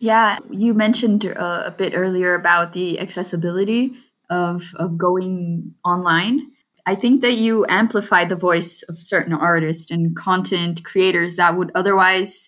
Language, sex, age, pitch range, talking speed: English, female, 20-39, 175-215 Hz, 145 wpm